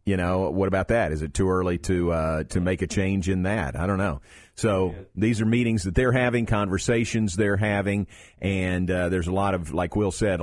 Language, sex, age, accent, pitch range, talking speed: English, male, 40-59, American, 90-115 Hz, 225 wpm